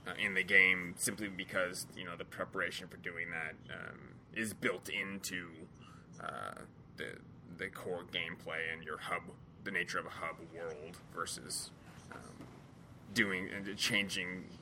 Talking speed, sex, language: 150 wpm, male, English